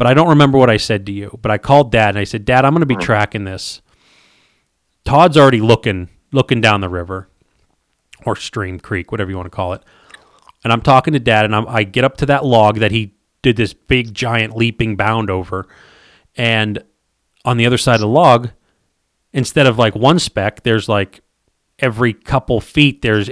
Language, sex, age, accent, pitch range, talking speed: English, male, 30-49, American, 105-130 Hz, 205 wpm